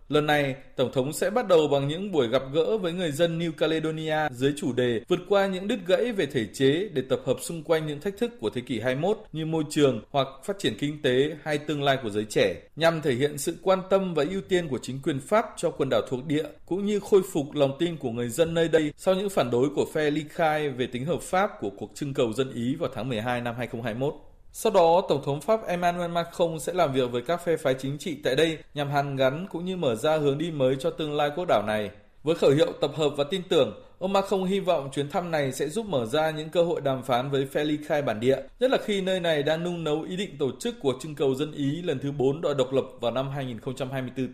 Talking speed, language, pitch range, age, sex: 265 wpm, Vietnamese, 130-170 Hz, 20-39, male